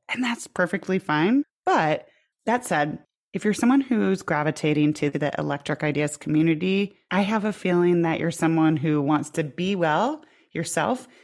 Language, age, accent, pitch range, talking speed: English, 30-49, American, 155-210 Hz, 160 wpm